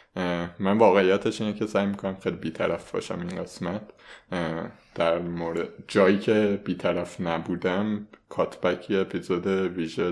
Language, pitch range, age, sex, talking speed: Persian, 90-110 Hz, 20-39, male, 115 wpm